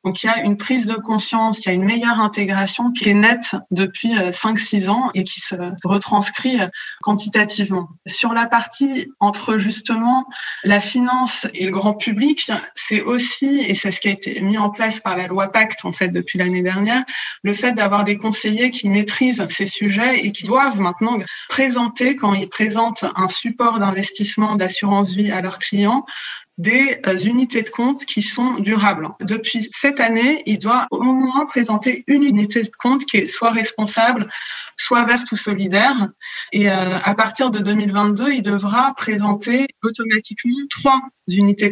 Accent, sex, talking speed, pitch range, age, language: French, female, 170 wpm, 200-245 Hz, 20-39, French